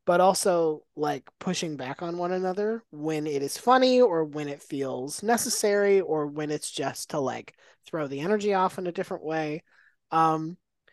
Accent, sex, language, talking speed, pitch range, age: American, male, English, 175 wpm, 140-185 Hz, 20-39